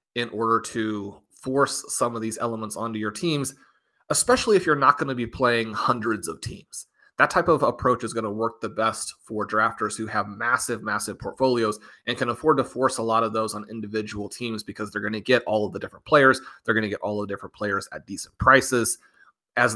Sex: male